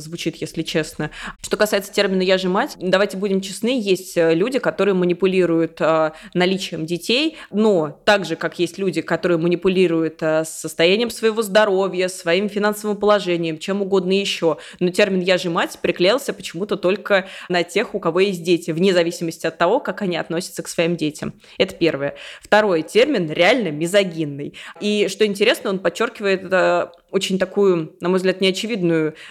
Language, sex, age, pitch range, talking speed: Russian, female, 20-39, 170-210 Hz, 160 wpm